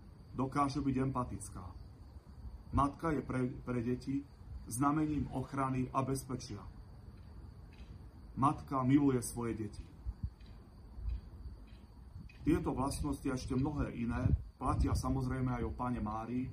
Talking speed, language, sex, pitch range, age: 100 wpm, Slovak, male, 95-135 Hz, 40-59